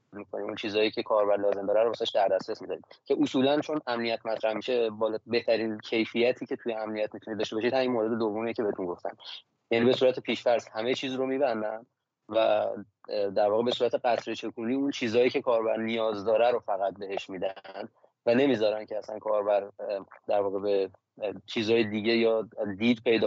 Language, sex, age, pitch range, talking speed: Persian, male, 30-49, 110-125 Hz, 175 wpm